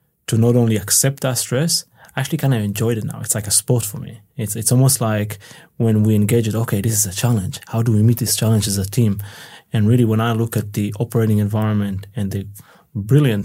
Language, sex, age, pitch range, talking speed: English, male, 20-39, 105-130 Hz, 235 wpm